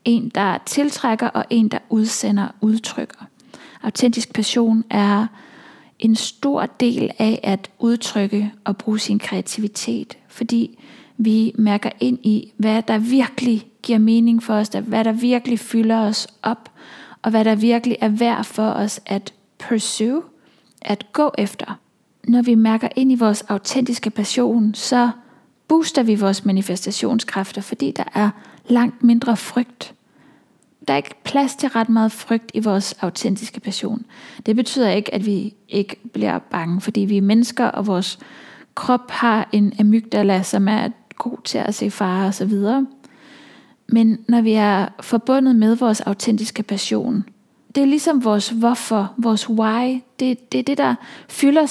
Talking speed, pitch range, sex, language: 155 wpm, 210-245 Hz, female, English